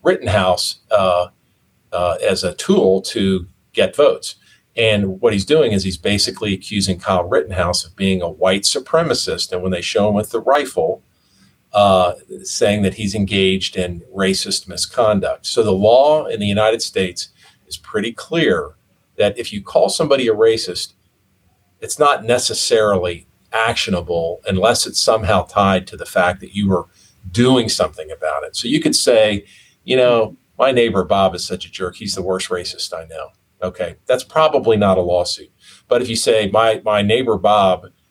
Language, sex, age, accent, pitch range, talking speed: English, male, 50-69, American, 90-105 Hz, 170 wpm